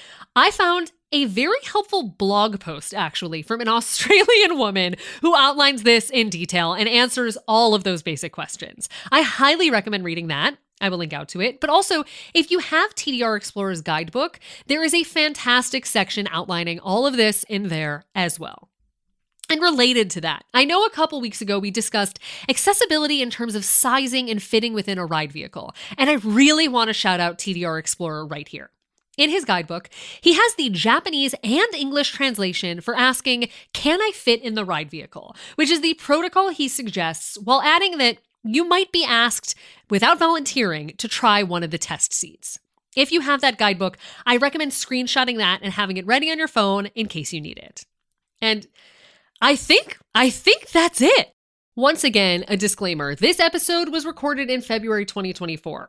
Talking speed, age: 185 wpm, 30-49